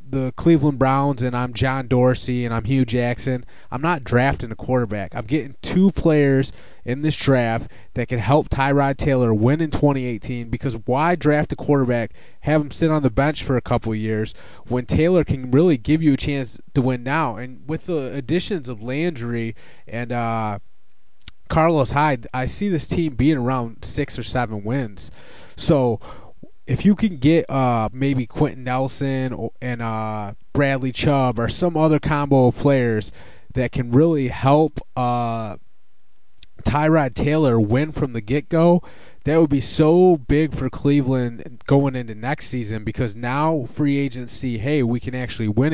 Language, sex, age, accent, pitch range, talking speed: English, male, 20-39, American, 120-150 Hz, 170 wpm